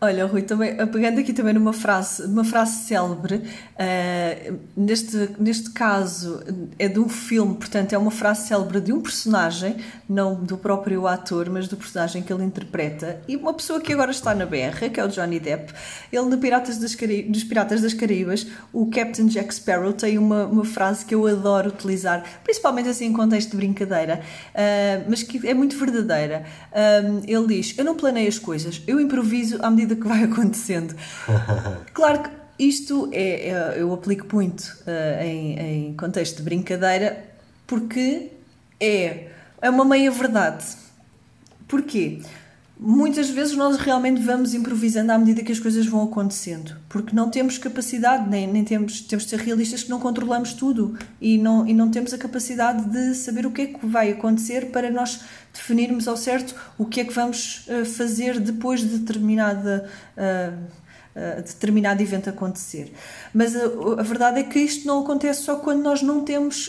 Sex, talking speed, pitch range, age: female, 165 wpm, 195-245 Hz, 20-39